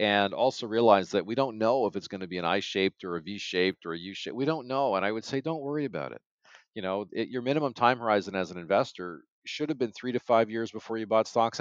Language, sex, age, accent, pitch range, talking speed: English, male, 40-59, American, 100-125 Hz, 265 wpm